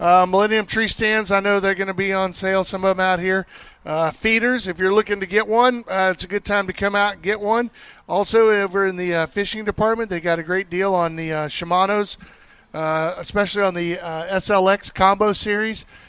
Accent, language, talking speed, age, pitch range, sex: American, English, 220 wpm, 40-59, 180-205 Hz, male